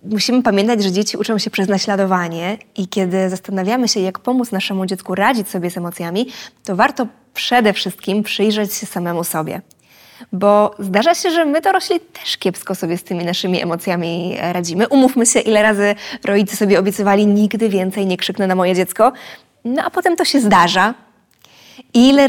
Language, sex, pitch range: Polish, female, 190-250 Hz